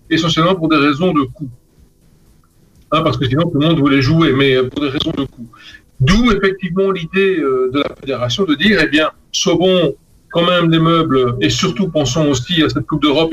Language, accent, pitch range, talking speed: French, French, 135-180 Hz, 200 wpm